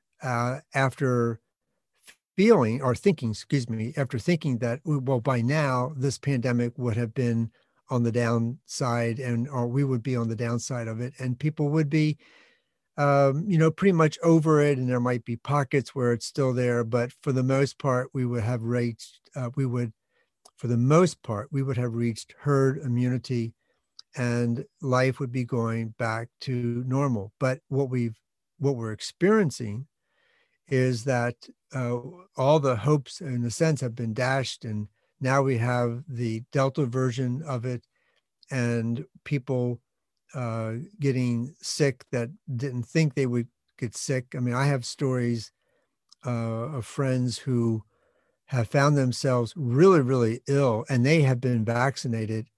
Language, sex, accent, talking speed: English, male, American, 160 wpm